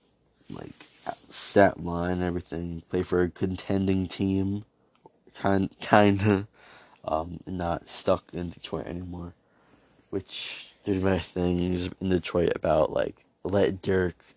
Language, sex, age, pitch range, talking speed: English, male, 20-39, 85-95 Hz, 115 wpm